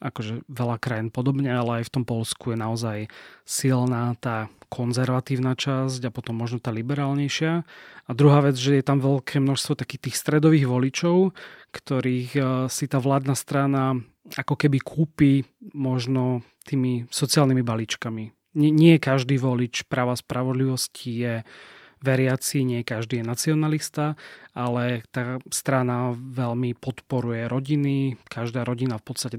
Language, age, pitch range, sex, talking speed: Slovak, 30-49, 120-140 Hz, male, 135 wpm